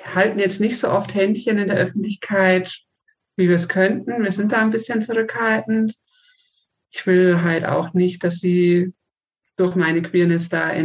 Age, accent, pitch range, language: 50-69, German, 170-200 Hz, German